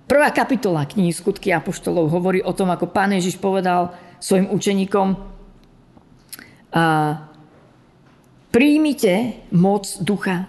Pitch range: 180-225 Hz